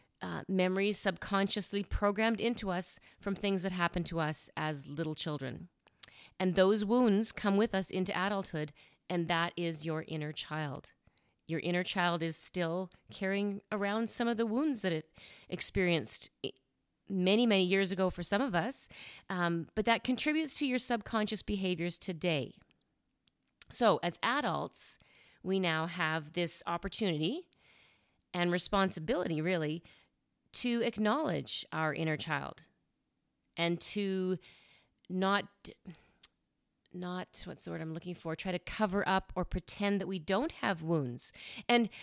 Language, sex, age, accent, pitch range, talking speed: English, female, 40-59, American, 170-210 Hz, 140 wpm